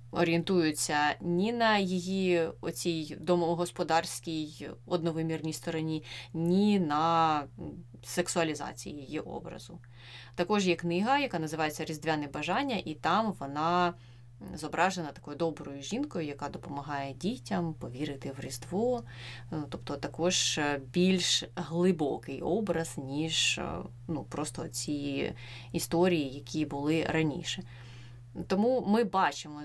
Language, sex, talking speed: Ukrainian, female, 95 wpm